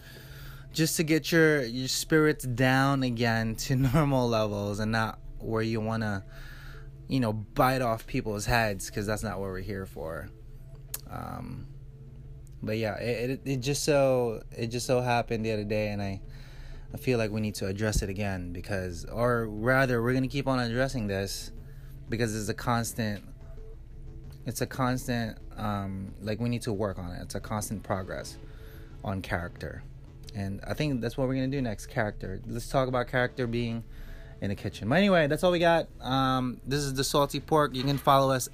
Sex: male